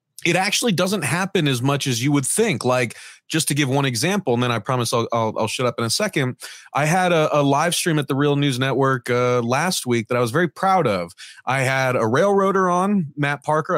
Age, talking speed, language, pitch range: 30-49, 240 wpm, English, 130-165 Hz